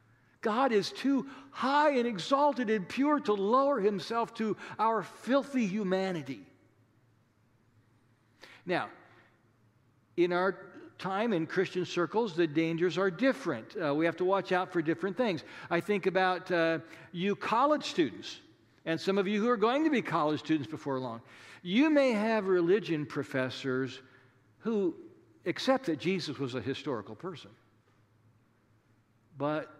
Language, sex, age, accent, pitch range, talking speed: English, male, 60-79, American, 125-205 Hz, 140 wpm